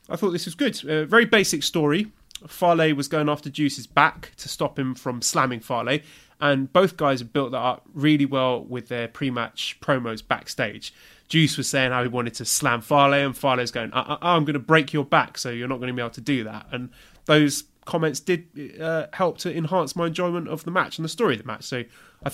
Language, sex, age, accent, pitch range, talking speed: English, male, 20-39, British, 125-160 Hz, 225 wpm